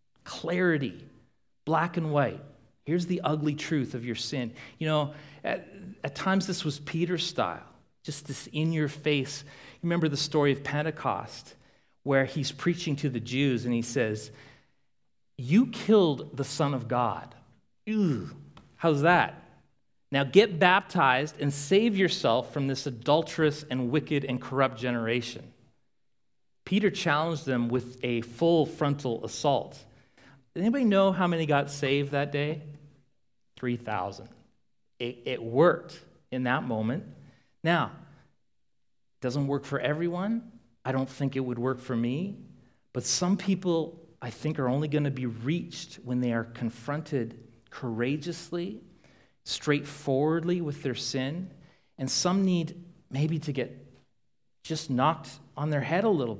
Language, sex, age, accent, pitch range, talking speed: English, male, 40-59, American, 125-165 Hz, 135 wpm